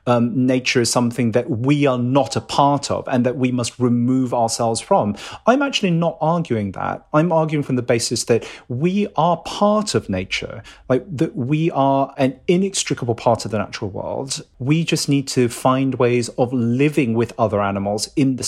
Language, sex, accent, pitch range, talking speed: English, male, British, 120-150 Hz, 190 wpm